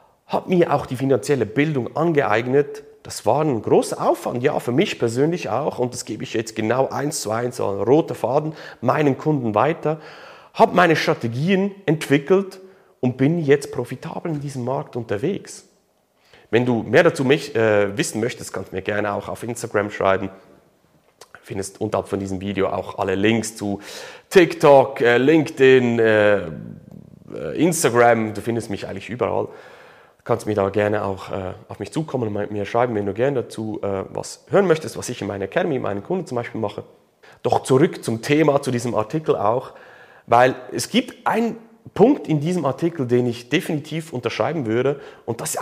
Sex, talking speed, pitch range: male, 170 wpm, 110-160 Hz